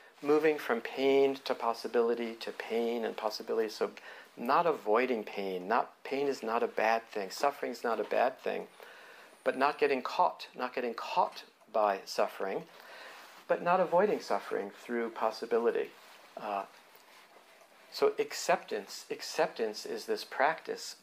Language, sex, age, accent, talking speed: English, male, 50-69, American, 135 wpm